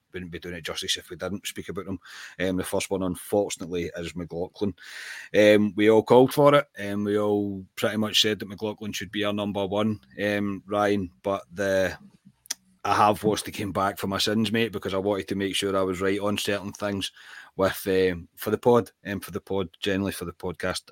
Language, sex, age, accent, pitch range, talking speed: English, male, 30-49, British, 95-110 Hz, 220 wpm